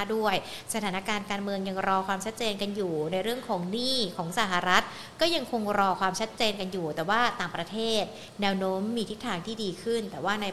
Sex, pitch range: female, 190-235 Hz